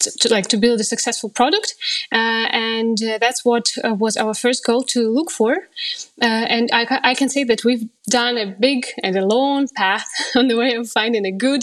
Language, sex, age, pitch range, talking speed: English, female, 20-39, 225-265 Hz, 225 wpm